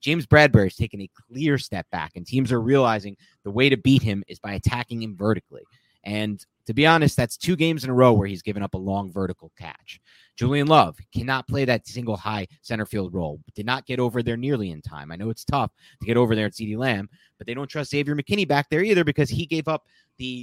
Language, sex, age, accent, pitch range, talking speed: English, male, 30-49, American, 110-150 Hz, 245 wpm